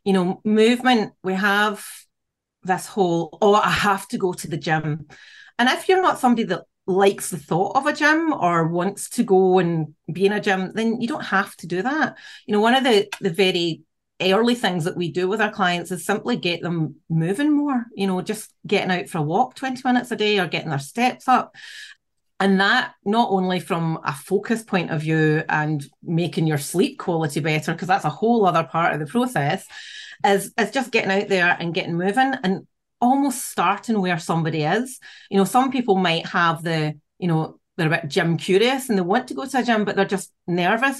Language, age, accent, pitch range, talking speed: English, 40-59, British, 170-215 Hz, 215 wpm